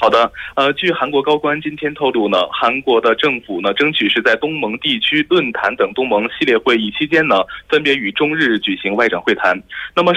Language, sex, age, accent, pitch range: Korean, male, 20-39, Chinese, 140-200 Hz